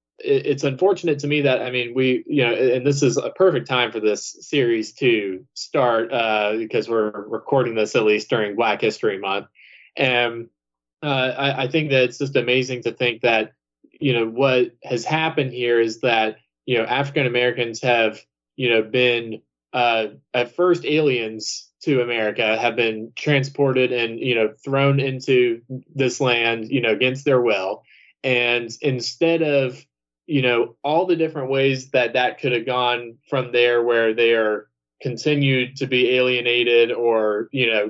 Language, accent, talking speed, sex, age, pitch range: English, American, 170 wpm, male, 20-39, 115-140 Hz